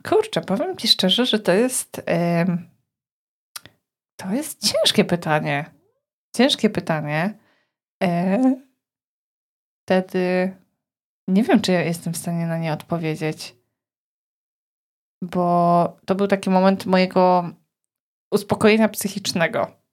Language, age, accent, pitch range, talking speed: Polish, 20-39, native, 170-205 Hz, 95 wpm